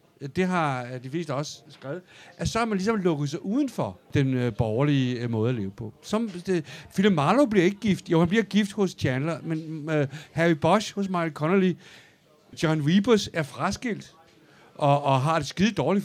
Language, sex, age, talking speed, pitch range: Danish, male, 60-79, 185 wpm, 140-195 Hz